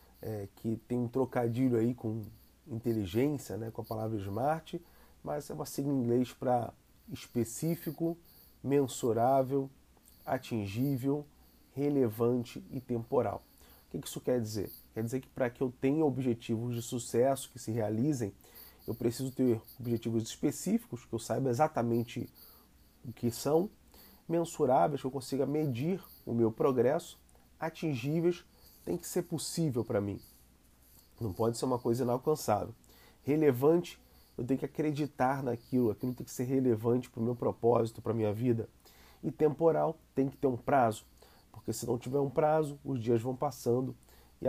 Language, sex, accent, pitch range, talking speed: Portuguese, male, Brazilian, 115-140 Hz, 155 wpm